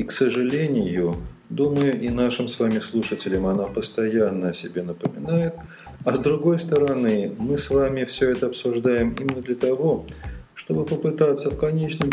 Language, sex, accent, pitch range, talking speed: Russian, male, native, 105-155 Hz, 155 wpm